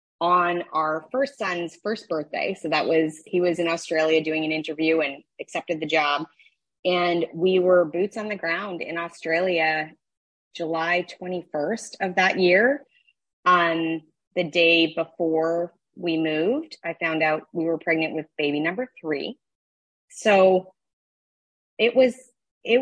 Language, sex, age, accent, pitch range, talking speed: English, female, 20-39, American, 160-190 Hz, 140 wpm